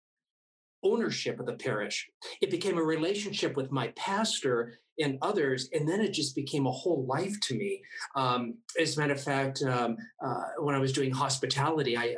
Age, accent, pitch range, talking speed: 40-59, American, 130-160 Hz, 180 wpm